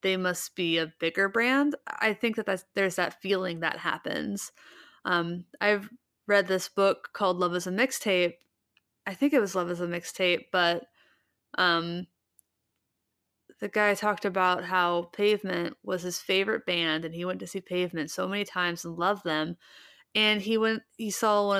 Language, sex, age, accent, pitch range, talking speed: English, female, 20-39, American, 175-210 Hz, 170 wpm